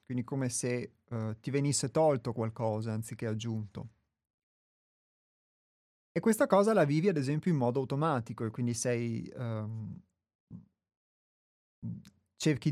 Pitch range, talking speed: 115-145 Hz, 120 wpm